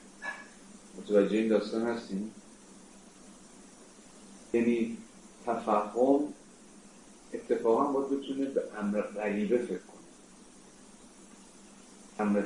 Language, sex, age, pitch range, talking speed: Persian, male, 40-59, 95-110 Hz, 70 wpm